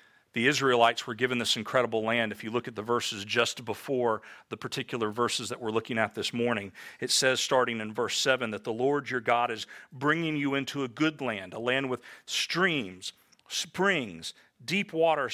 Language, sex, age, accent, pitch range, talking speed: English, male, 40-59, American, 115-145 Hz, 190 wpm